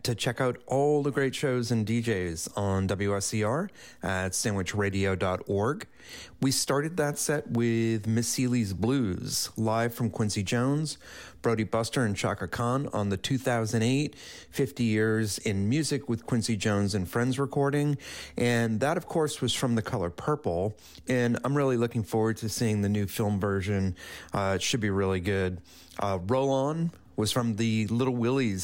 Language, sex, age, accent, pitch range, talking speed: English, male, 30-49, American, 100-130 Hz, 160 wpm